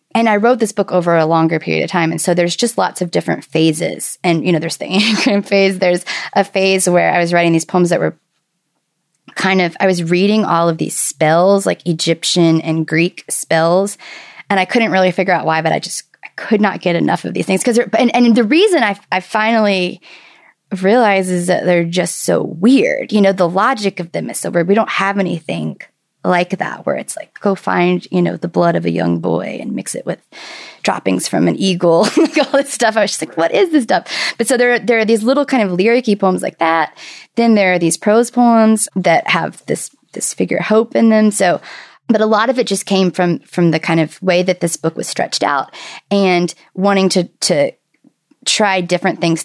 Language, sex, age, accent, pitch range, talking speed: English, female, 20-39, American, 170-220 Hz, 225 wpm